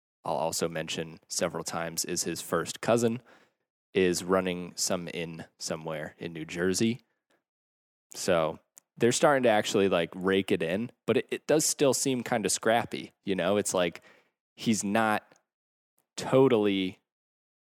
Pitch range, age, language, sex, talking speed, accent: 85-115 Hz, 20-39, English, male, 145 wpm, American